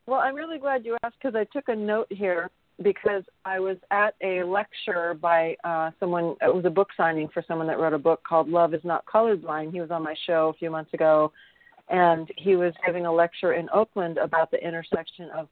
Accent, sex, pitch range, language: American, female, 165-200 Hz, English